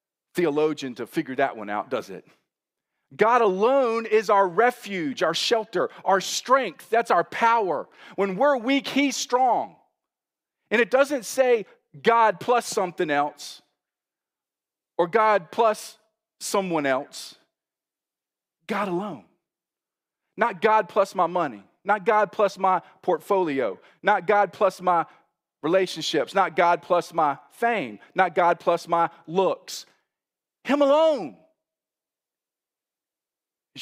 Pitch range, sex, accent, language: 175-235 Hz, male, American, English